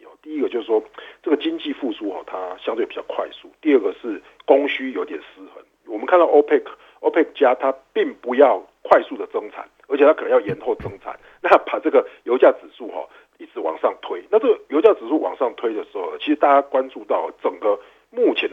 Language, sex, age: Chinese, male, 50-69